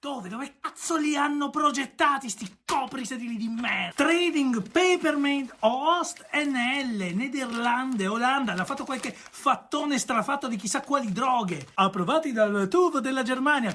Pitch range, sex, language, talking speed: 195-285 Hz, male, Italian, 140 wpm